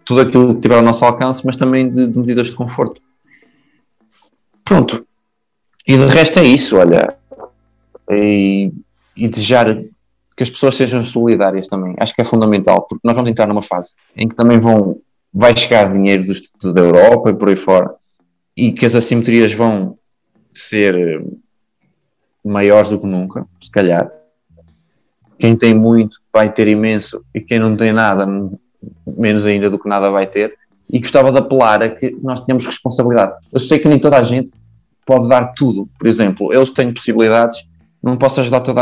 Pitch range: 105-130 Hz